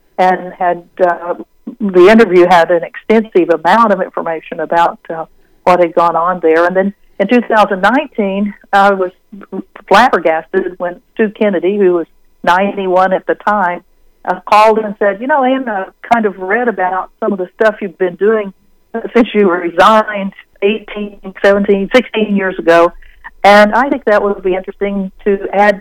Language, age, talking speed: English, 60-79, 165 wpm